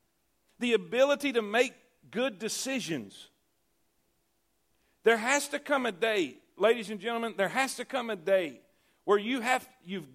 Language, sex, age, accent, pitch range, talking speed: English, male, 50-69, American, 215-265 Hz, 150 wpm